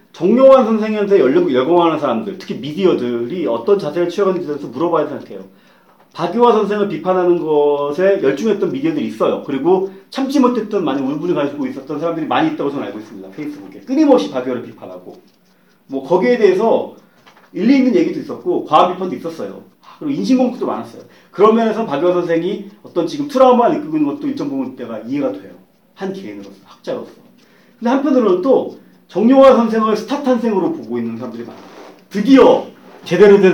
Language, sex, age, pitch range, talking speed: English, male, 40-59, 150-245 Hz, 150 wpm